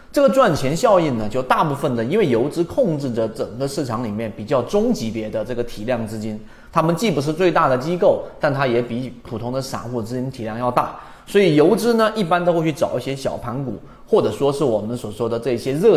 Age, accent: 30-49, native